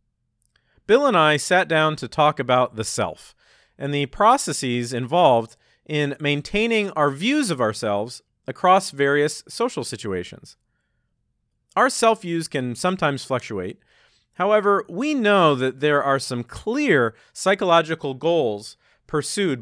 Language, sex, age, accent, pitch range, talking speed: English, male, 40-59, American, 120-165 Hz, 120 wpm